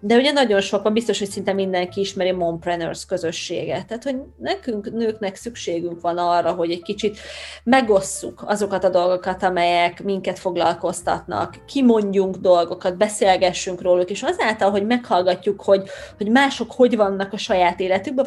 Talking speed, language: 145 wpm, Hungarian